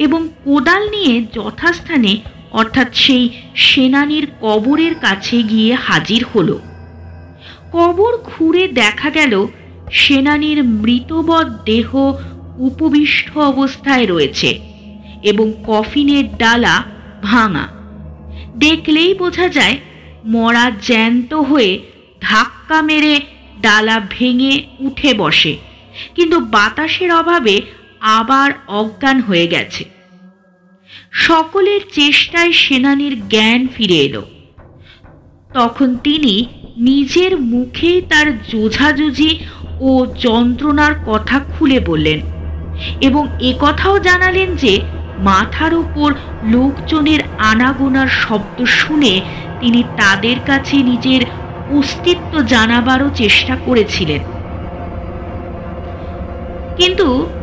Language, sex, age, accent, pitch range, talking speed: Bengali, female, 50-69, native, 210-300 Hz, 85 wpm